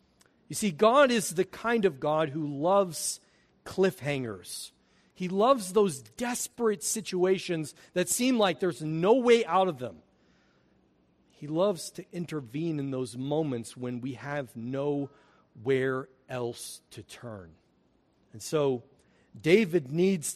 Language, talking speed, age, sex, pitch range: English, 125 wpm, 40-59, male, 130-195 Hz